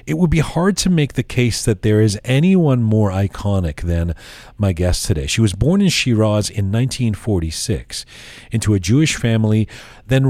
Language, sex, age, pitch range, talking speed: English, male, 40-59, 95-125 Hz, 175 wpm